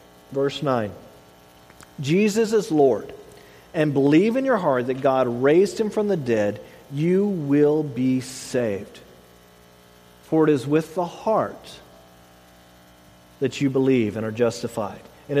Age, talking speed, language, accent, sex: 40-59, 130 wpm, English, American, male